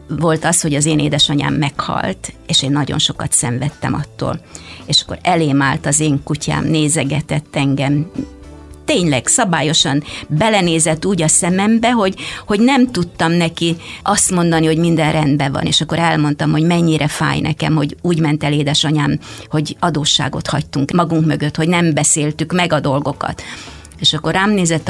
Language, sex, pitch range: Hungarian, female, 145-165 Hz